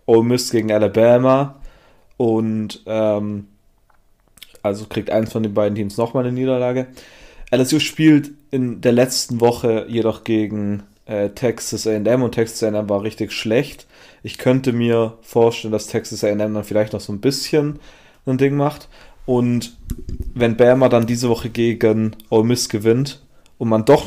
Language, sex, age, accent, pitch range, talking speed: German, male, 30-49, German, 105-125 Hz, 155 wpm